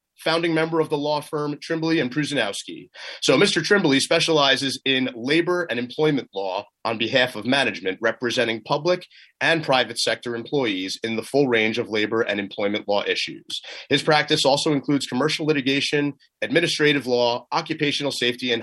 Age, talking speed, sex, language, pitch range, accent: 30-49, 160 wpm, male, English, 120-155 Hz, American